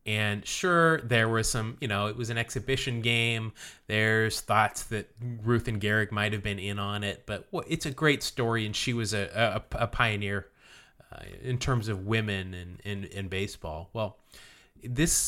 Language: English